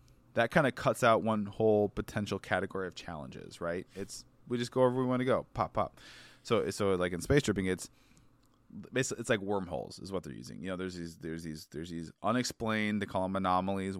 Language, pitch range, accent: English, 90-105 Hz, American